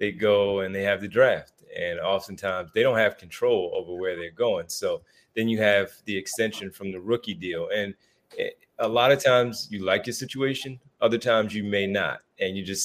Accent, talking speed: American, 205 wpm